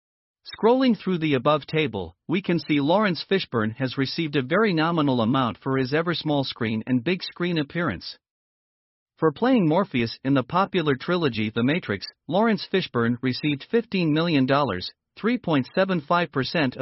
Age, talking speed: 50-69, 145 wpm